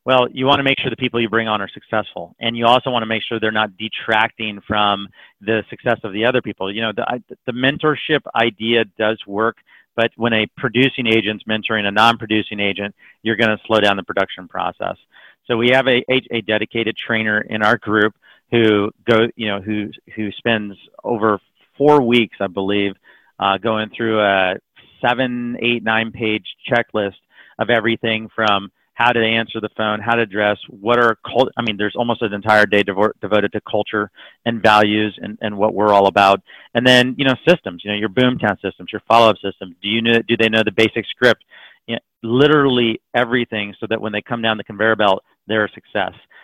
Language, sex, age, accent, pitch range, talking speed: English, male, 40-59, American, 105-120 Hz, 205 wpm